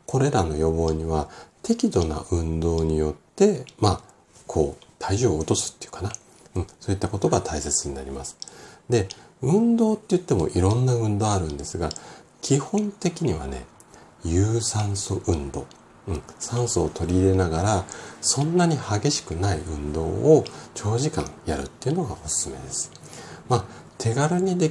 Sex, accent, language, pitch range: male, native, Japanese, 80-125 Hz